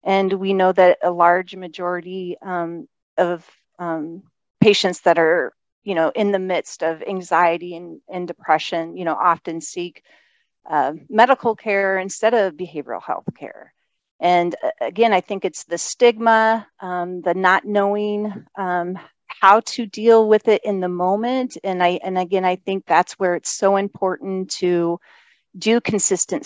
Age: 40-59